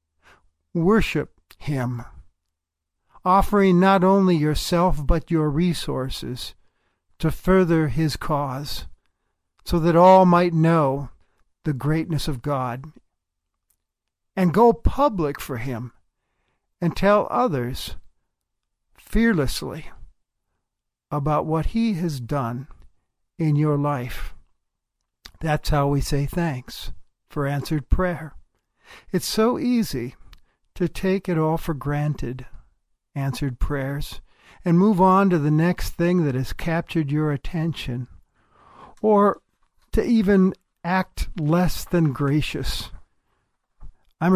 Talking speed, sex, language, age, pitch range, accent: 105 wpm, male, English, 60-79, 130-180 Hz, American